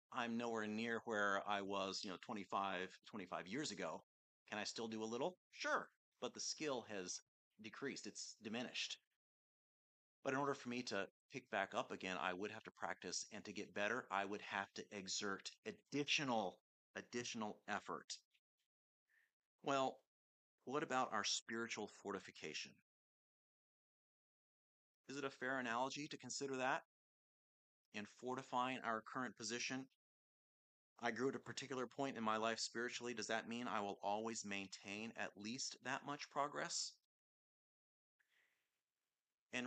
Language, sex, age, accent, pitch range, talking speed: English, male, 30-49, American, 100-125 Hz, 145 wpm